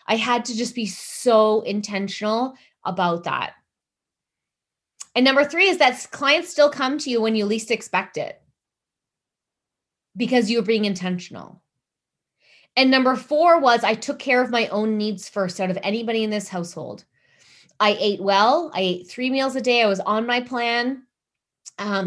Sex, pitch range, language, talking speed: female, 195-245 Hz, English, 165 wpm